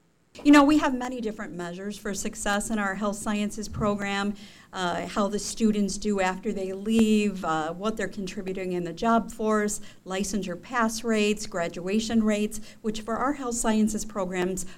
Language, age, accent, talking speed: English, 50-69, American, 165 wpm